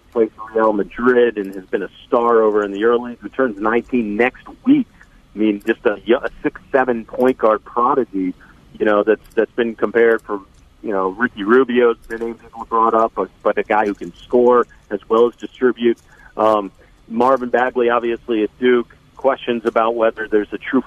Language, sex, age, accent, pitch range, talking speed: English, male, 40-59, American, 110-130 Hz, 190 wpm